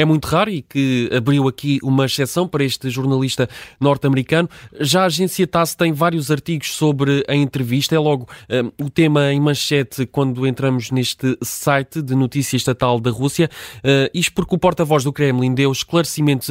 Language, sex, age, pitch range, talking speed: Portuguese, male, 20-39, 130-155 Hz, 175 wpm